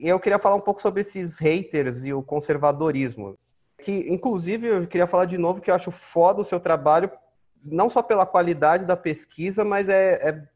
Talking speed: 200 wpm